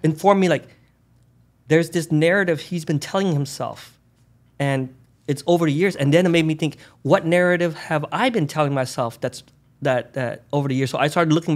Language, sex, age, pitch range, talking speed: English, male, 20-39, 130-155 Hz, 195 wpm